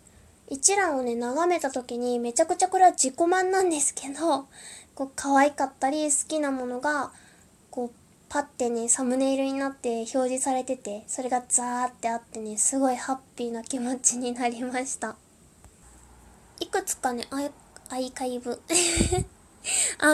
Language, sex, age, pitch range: Japanese, female, 10-29, 245-315 Hz